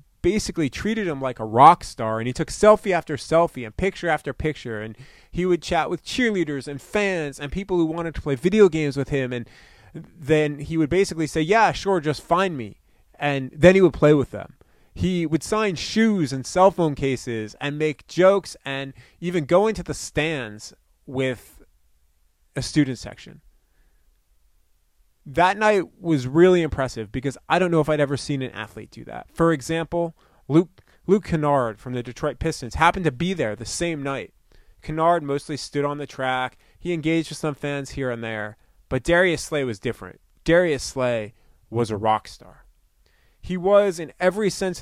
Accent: American